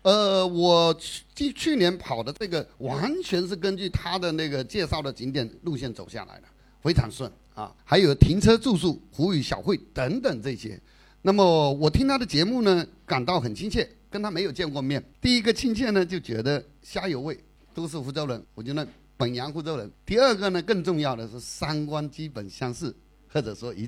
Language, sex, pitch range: Chinese, male, 135-210 Hz